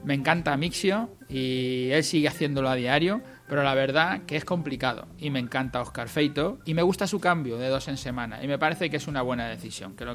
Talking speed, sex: 230 wpm, male